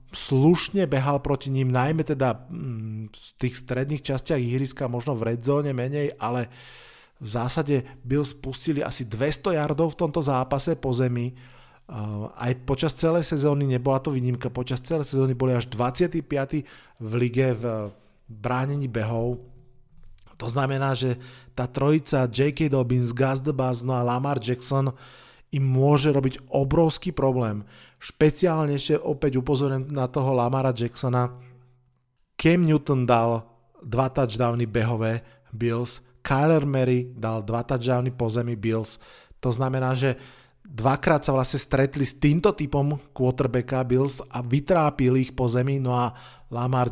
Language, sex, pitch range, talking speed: Slovak, male, 125-140 Hz, 135 wpm